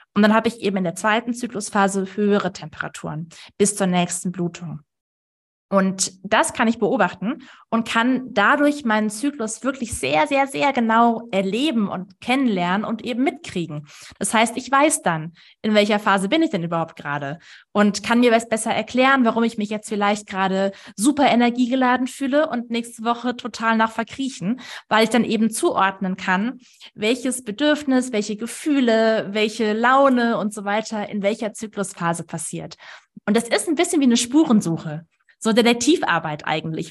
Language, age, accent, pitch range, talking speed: German, 20-39, German, 195-235 Hz, 165 wpm